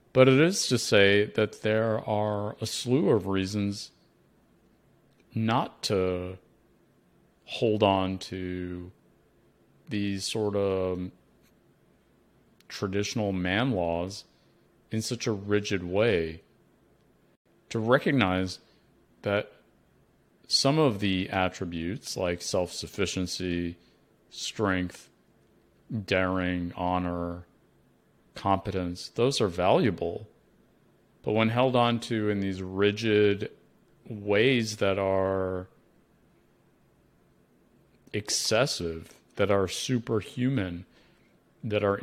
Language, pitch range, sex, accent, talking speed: English, 90-115 Hz, male, American, 85 wpm